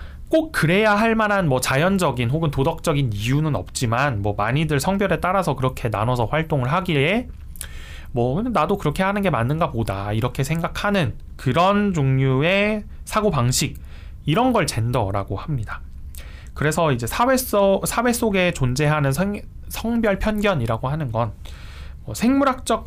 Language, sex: Korean, male